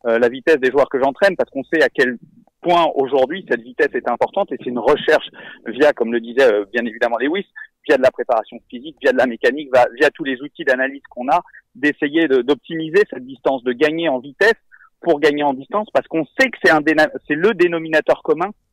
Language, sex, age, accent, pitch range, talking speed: French, male, 40-59, French, 135-200 Hz, 220 wpm